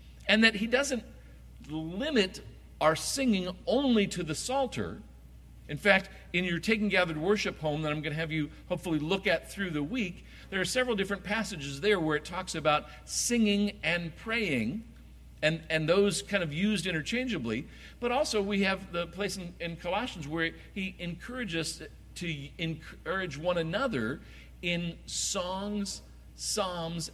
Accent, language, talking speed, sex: American, English, 155 wpm, male